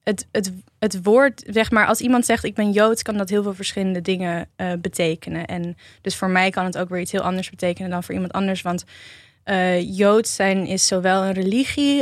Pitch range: 180-205 Hz